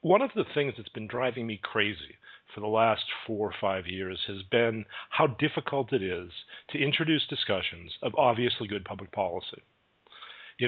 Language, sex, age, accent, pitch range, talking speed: English, male, 50-69, American, 105-135 Hz, 175 wpm